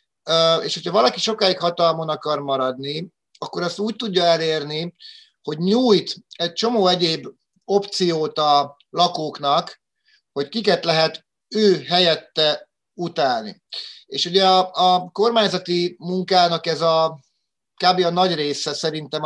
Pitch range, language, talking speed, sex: 155-190 Hz, Hungarian, 120 wpm, male